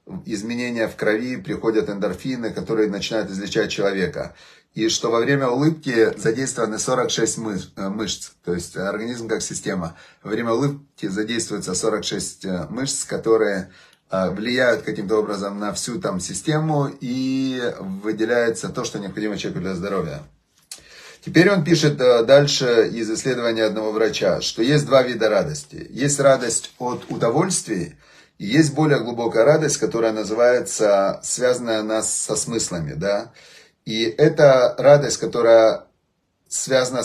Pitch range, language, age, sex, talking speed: 110-135 Hz, Russian, 30-49, male, 125 wpm